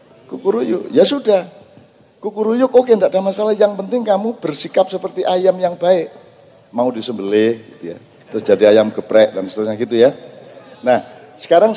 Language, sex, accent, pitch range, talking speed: English, male, Indonesian, 155-205 Hz, 155 wpm